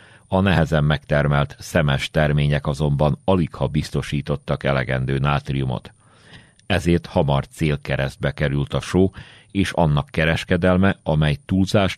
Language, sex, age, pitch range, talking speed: Hungarian, male, 40-59, 70-90 Hz, 105 wpm